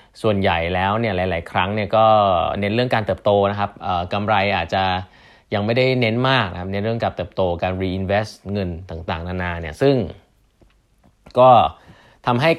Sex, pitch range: male, 90-110 Hz